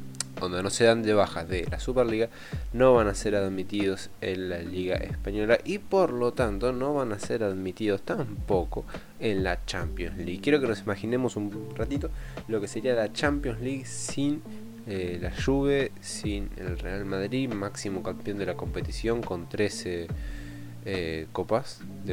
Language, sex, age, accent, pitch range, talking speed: Spanish, male, 20-39, Argentinian, 90-115 Hz, 170 wpm